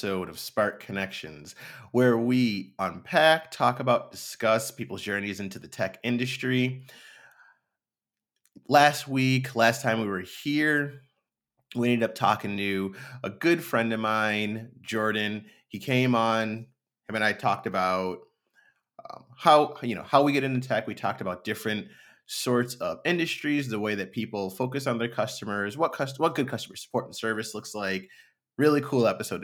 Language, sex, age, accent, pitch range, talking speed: English, male, 30-49, American, 100-130 Hz, 160 wpm